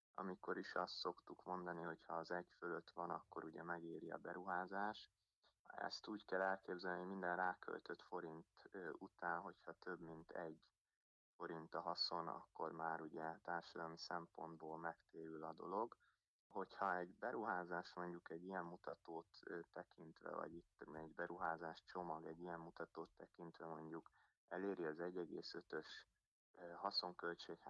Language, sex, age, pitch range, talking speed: Hungarian, male, 30-49, 80-90 Hz, 130 wpm